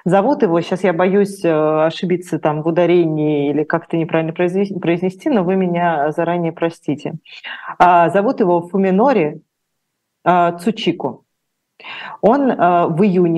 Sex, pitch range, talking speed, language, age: female, 160-185 Hz, 110 wpm, Russian, 30-49